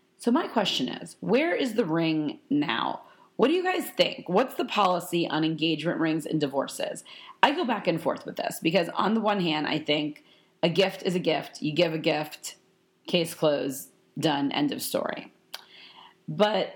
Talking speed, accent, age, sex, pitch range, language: 185 wpm, American, 30-49, female, 150-200 Hz, English